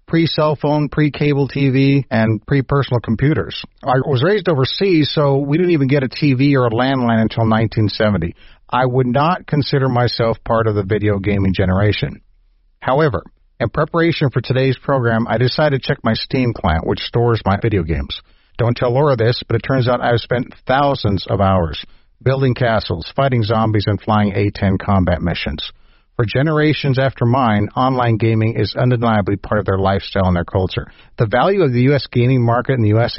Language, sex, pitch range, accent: English, male, 105-135 Hz, American